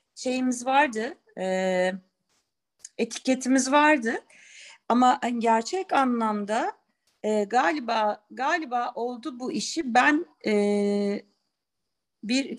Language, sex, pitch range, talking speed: Turkish, female, 210-290 Hz, 80 wpm